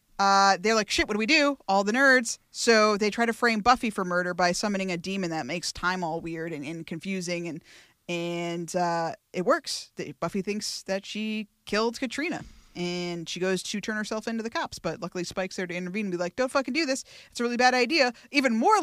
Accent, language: American, English